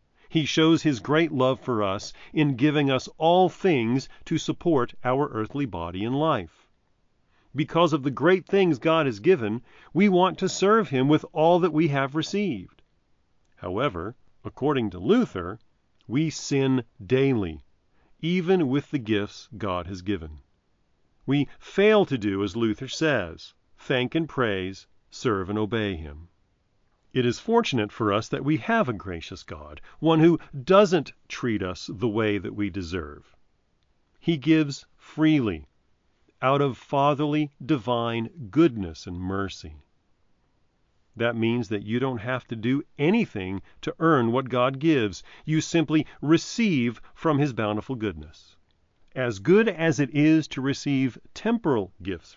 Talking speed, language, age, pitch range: 145 wpm, English, 40-59, 100-155 Hz